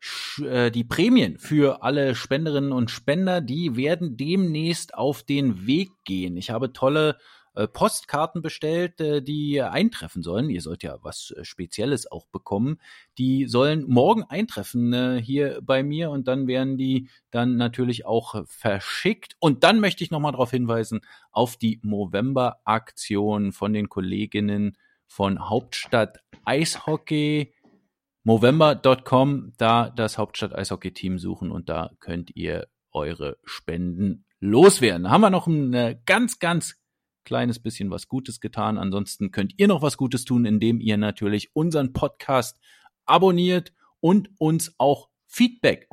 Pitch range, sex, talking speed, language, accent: 110-150 Hz, male, 135 wpm, English, German